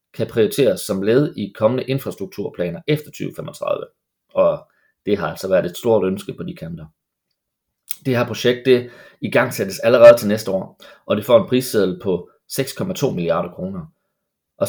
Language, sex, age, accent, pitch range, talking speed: Danish, male, 30-49, native, 105-170 Hz, 160 wpm